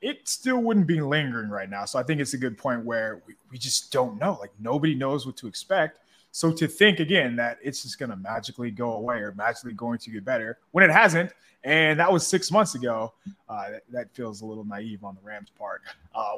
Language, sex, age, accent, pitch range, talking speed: English, male, 20-39, American, 110-170 Hz, 235 wpm